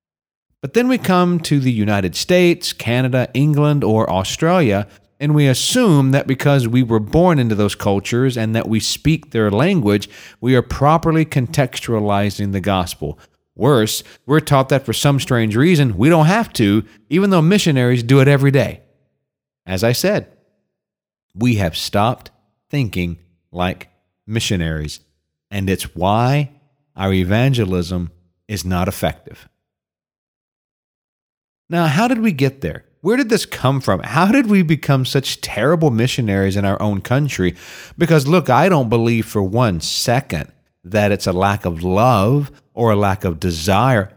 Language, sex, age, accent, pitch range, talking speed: English, male, 40-59, American, 100-150 Hz, 150 wpm